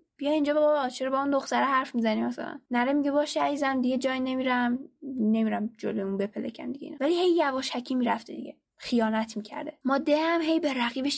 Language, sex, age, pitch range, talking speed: Persian, female, 10-29, 230-295 Hz, 180 wpm